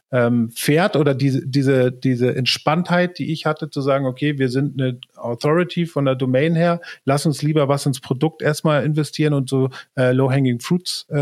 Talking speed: 170 wpm